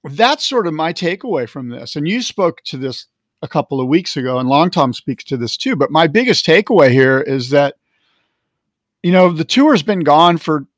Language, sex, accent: English, male, American